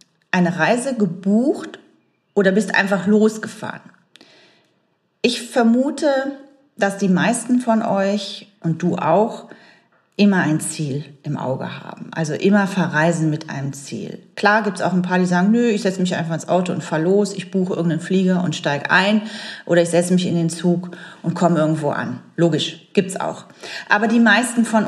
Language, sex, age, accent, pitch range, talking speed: German, female, 40-59, German, 170-220 Hz, 175 wpm